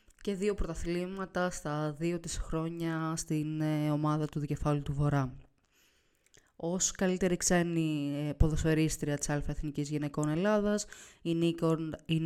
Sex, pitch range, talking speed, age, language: female, 150-180 Hz, 120 wpm, 20-39, Greek